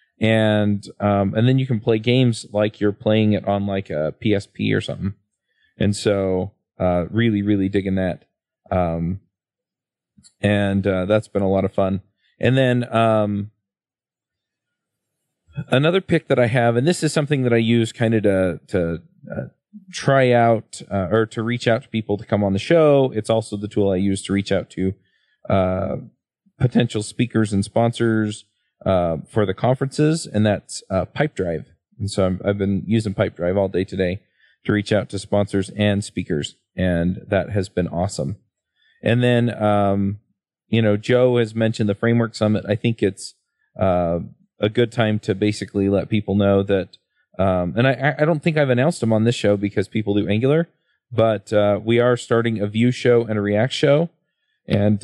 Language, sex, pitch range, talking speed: English, male, 100-120 Hz, 185 wpm